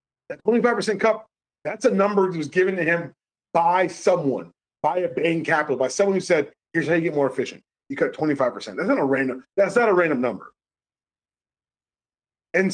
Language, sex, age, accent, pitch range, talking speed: English, male, 30-49, American, 145-195 Hz, 190 wpm